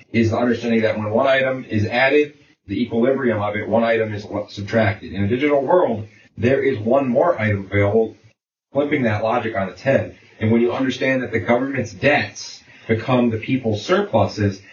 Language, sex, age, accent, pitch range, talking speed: English, male, 30-49, American, 105-120 Hz, 185 wpm